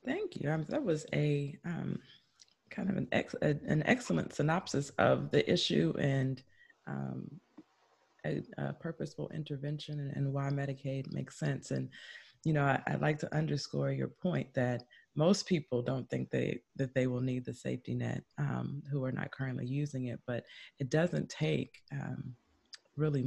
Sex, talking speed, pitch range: female, 175 wpm, 120-145 Hz